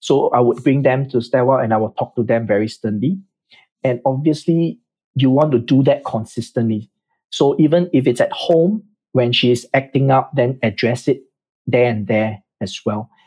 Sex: male